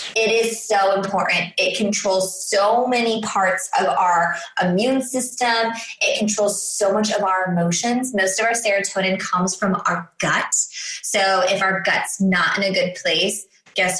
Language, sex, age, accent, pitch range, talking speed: English, female, 20-39, American, 185-245 Hz, 165 wpm